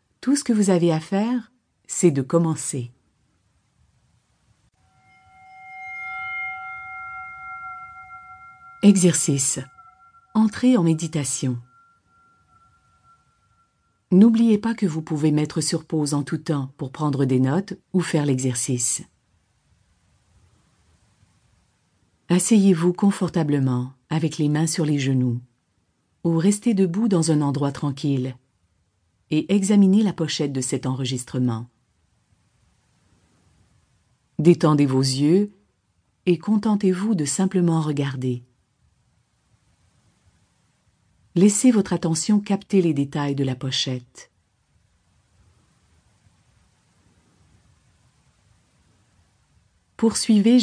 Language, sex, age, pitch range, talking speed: French, female, 50-69, 125-180 Hz, 85 wpm